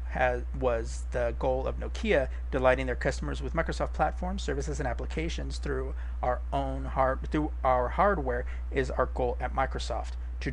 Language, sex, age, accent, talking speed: English, male, 40-59, American, 160 wpm